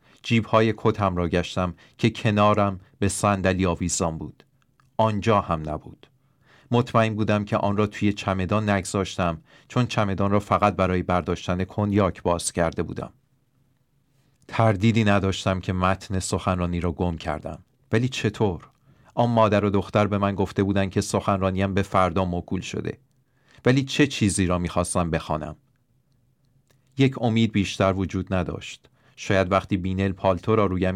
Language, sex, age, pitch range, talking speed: English, male, 40-59, 90-110 Hz, 140 wpm